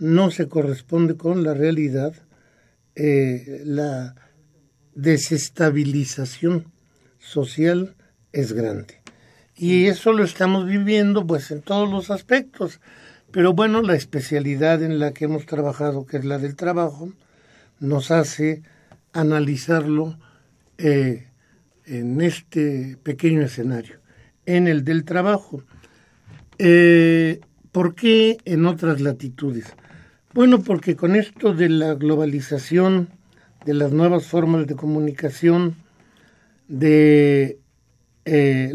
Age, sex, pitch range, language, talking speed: 60-79, male, 145-175 Hz, Spanish, 105 wpm